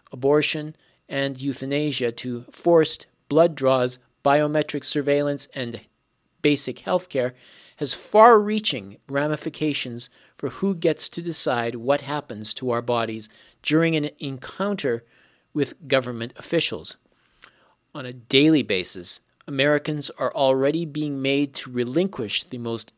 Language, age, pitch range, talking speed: English, 40-59, 120-150 Hz, 120 wpm